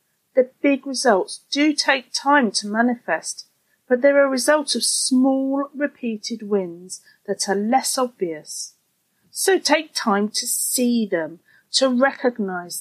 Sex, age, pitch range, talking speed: female, 40-59, 195-275 Hz, 130 wpm